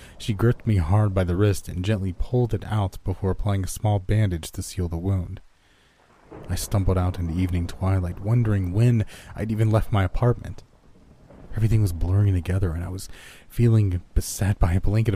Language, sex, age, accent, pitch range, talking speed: English, male, 30-49, American, 90-105 Hz, 180 wpm